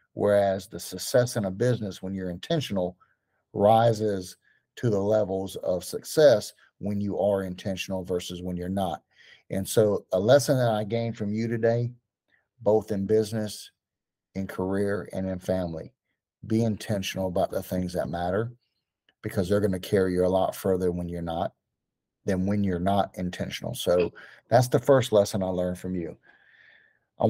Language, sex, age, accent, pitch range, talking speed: English, male, 50-69, American, 95-115 Hz, 165 wpm